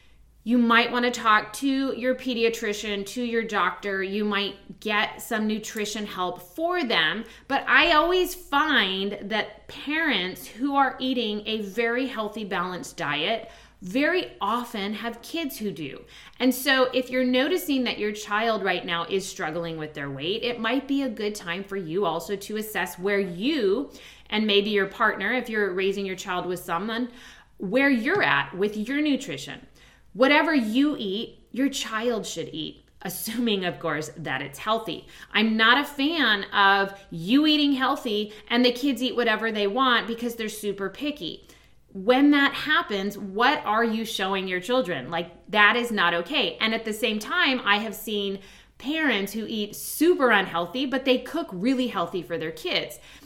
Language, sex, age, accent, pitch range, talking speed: English, female, 30-49, American, 195-255 Hz, 170 wpm